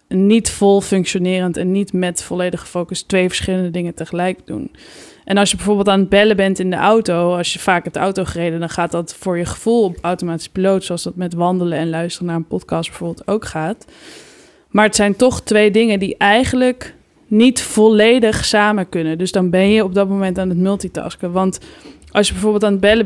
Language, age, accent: Dutch, 20-39, Dutch